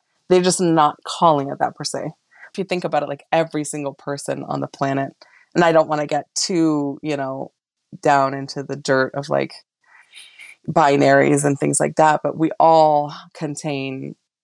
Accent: American